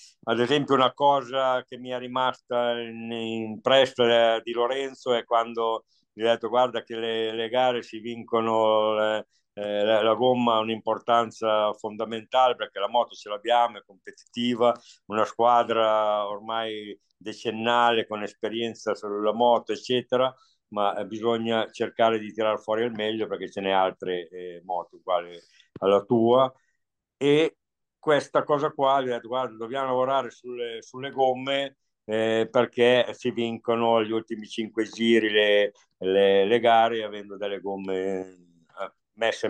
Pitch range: 110-125 Hz